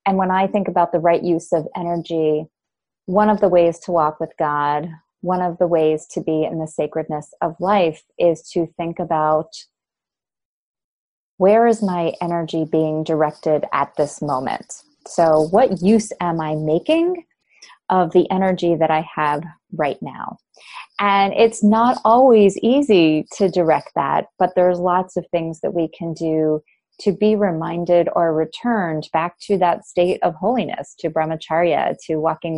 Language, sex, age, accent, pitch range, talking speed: English, female, 30-49, American, 160-195 Hz, 160 wpm